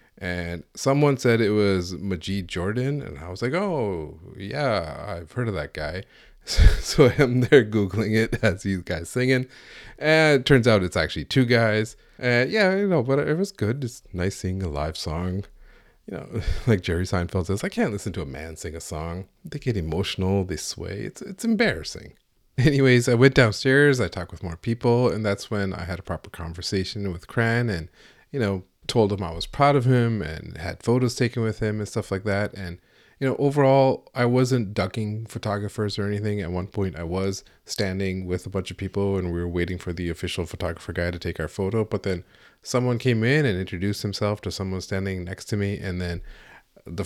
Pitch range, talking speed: 90-120 Hz, 205 wpm